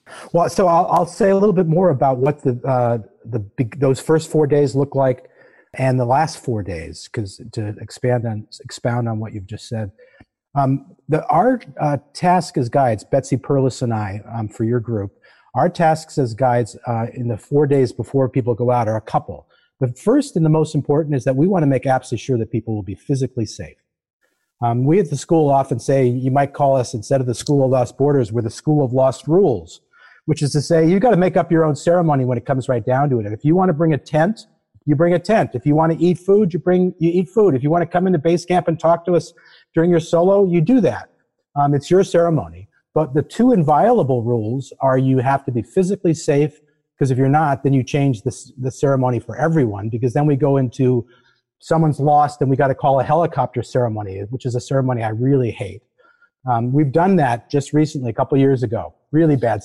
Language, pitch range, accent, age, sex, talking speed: English, 120-160 Hz, American, 40-59, male, 235 wpm